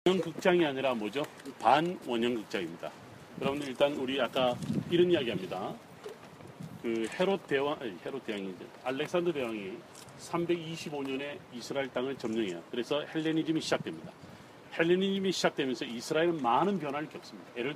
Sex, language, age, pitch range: male, Korean, 40-59, 125-165 Hz